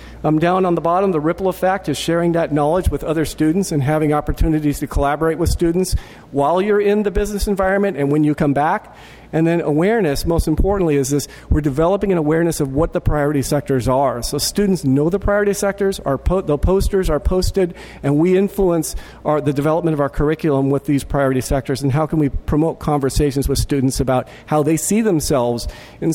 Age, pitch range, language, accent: 50-69, 140-185 Hz, English, American